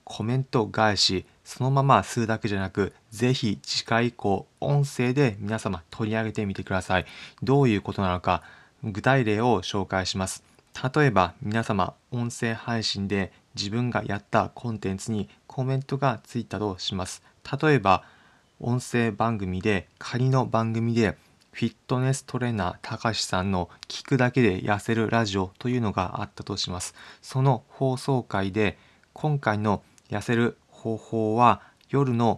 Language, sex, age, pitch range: Japanese, male, 20-39, 100-125 Hz